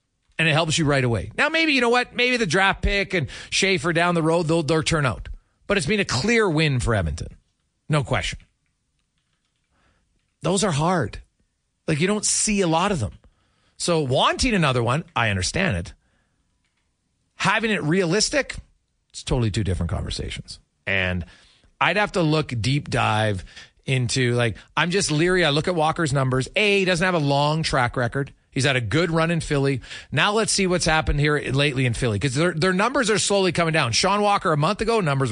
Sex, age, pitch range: male, 40-59, 115-175 Hz